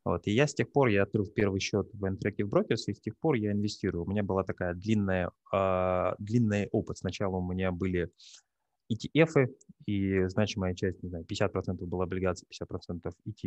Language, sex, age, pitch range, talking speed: Russian, male, 20-39, 95-110 Hz, 175 wpm